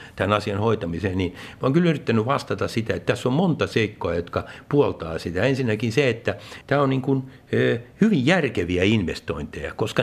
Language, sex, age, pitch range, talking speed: Finnish, male, 60-79, 100-140 Hz, 170 wpm